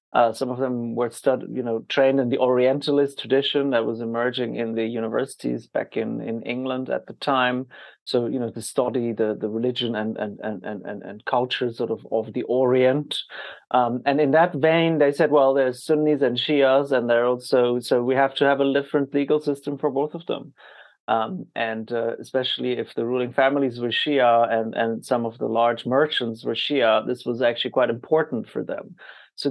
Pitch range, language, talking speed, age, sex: 120-140 Hz, English, 205 wpm, 30-49, male